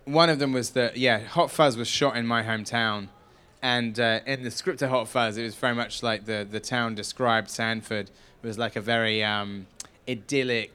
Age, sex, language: 20-39, male, English